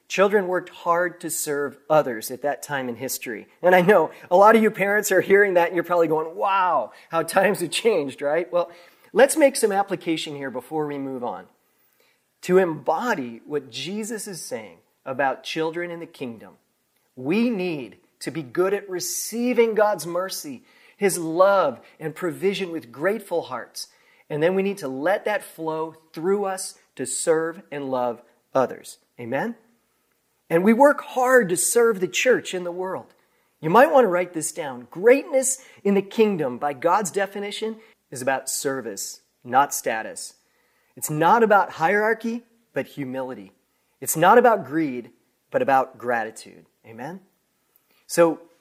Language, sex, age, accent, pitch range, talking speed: English, male, 40-59, American, 145-205 Hz, 160 wpm